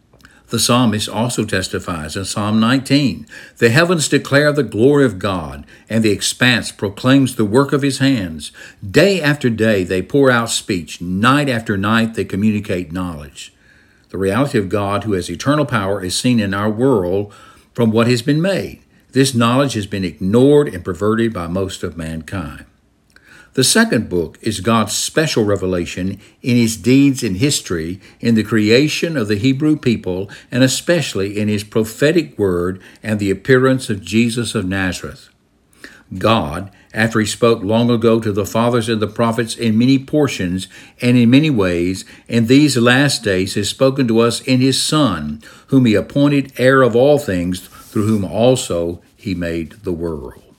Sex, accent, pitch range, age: male, American, 95-130 Hz, 60-79